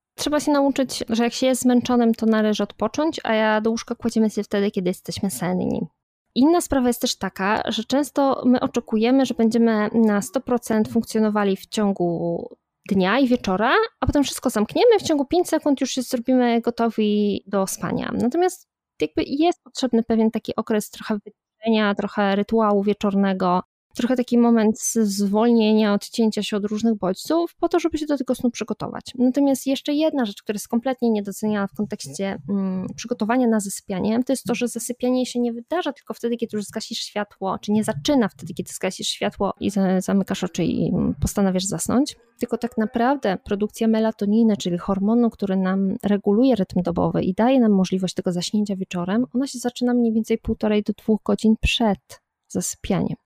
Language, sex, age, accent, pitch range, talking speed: Polish, female, 20-39, native, 205-250 Hz, 170 wpm